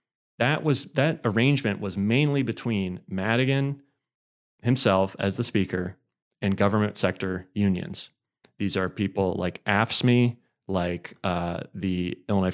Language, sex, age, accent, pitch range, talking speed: English, male, 30-49, American, 95-115 Hz, 120 wpm